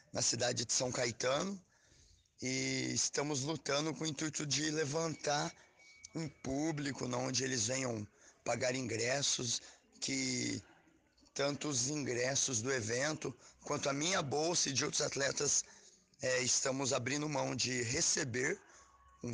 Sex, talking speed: male, 125 wpm